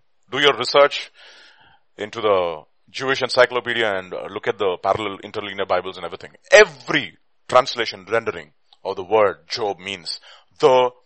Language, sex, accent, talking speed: English, male, Indian, 135 wpm